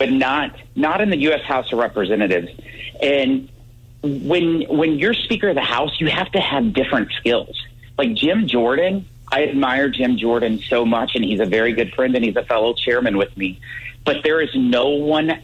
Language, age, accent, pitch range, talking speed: English, 40-59, American, 120-175 Hz, 195 wpm